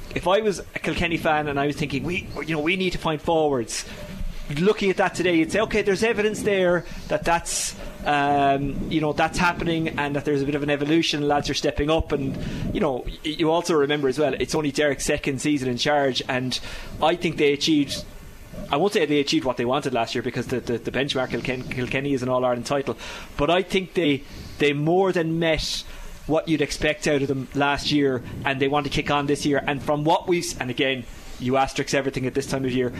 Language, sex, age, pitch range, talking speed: English, male, 20-39, 135-155 Hz, 225 wpm